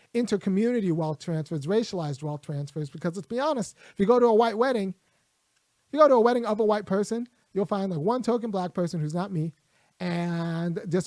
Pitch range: 175-215 Hz